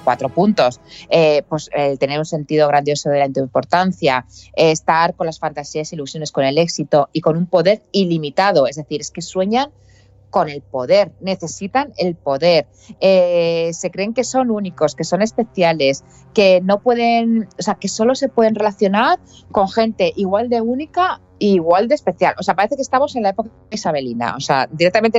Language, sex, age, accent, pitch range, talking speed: Spanish, female, 30-49, Spanish, 155-225 Hz, 180 wpm